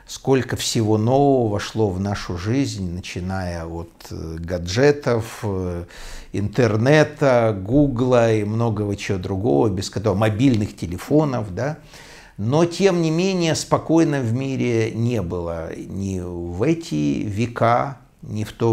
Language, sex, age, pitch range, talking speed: Russian, male, 60-79, 95-120 Hz, 120 wpm